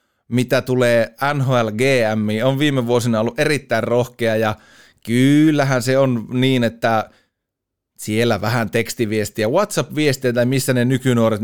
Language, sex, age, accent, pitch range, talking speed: Finnish, male, 30-49, native, 110-140 Hz, 120 wpm